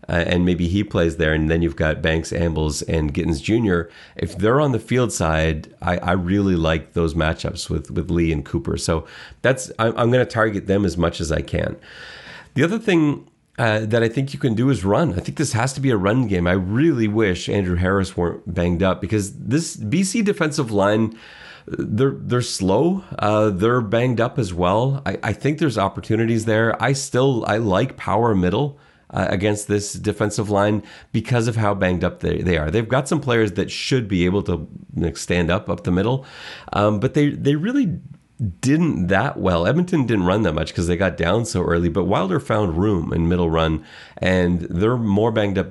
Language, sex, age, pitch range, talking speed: English, male, 30-49, 85-120 Hz, 205 wpm